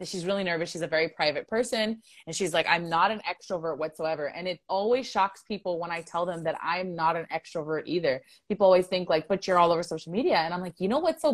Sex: female